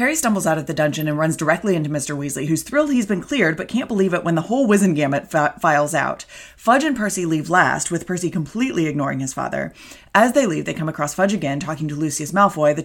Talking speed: 245 wpm